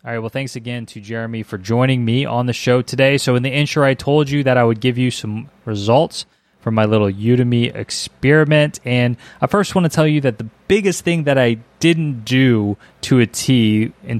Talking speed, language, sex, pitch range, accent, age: 220 wpm, English, male, 110-140 Hz, American, 20-39